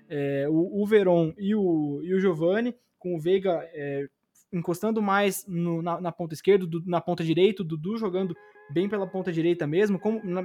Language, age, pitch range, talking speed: Portuguese, 20-39, 170-215 Hz, 195 wpm